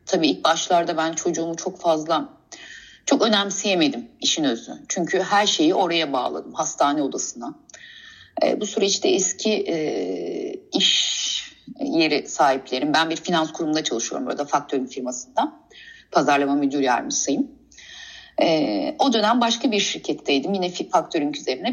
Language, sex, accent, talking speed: Turkish, female, native, 130 wpm